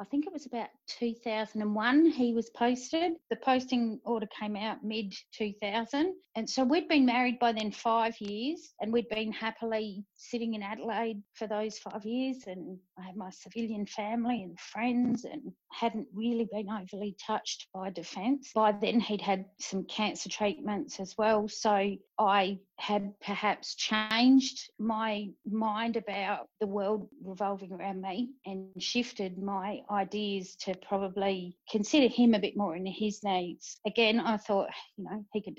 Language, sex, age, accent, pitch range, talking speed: English, female, 40-59, Australian, 200-235 Hz, 160 wpm